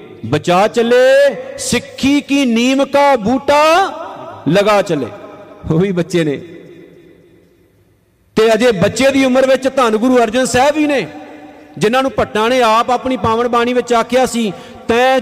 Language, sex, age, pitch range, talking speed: Punjabi, male, 50-69, 170-235 Hz, 140 wpm